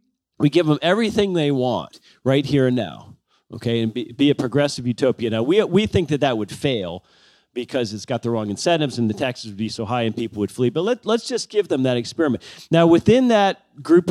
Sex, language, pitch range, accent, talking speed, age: male, English, 125-170 Hz, American, 230 wpm, 40-59